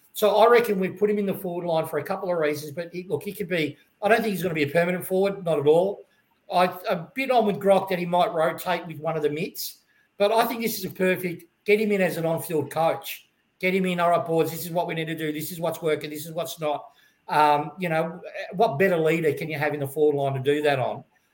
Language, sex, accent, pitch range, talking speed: English, male, Australian, 155-200 Hz, 290 wpm